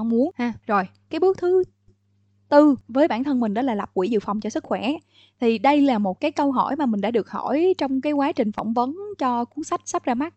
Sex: female